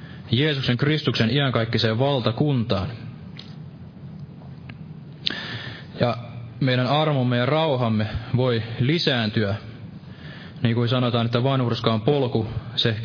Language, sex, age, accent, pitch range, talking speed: Finnish, male, 20-39, native, 120-145 Hz, 85 wpm